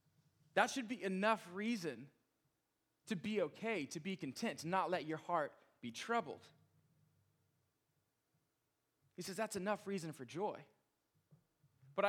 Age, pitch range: 20-39, 145-190 Hz